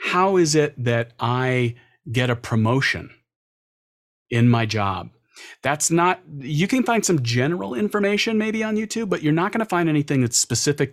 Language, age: English, 40-59